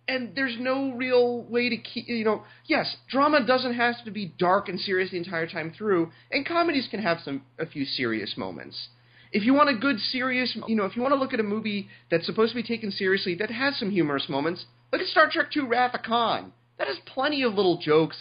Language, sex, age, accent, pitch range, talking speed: English, male, 30-49, American, 135-225 Hz, 230 wpm